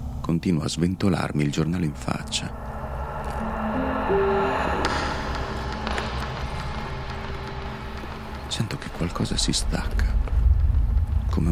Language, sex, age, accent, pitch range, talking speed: Italian, male, 40-59, native, 75-85 Hz, 70 wpm